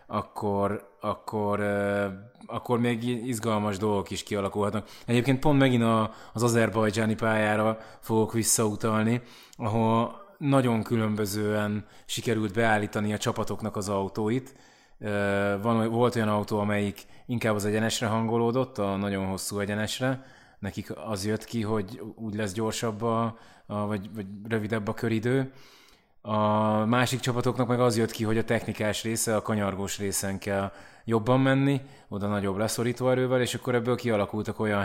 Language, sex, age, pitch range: Hungarian, male, 20-39, 105-120 Hz